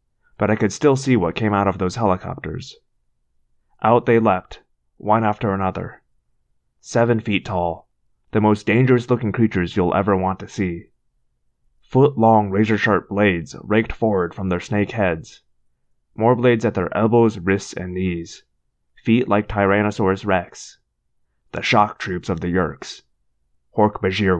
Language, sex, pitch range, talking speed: English, male, 90-115 Hz, 140 wpm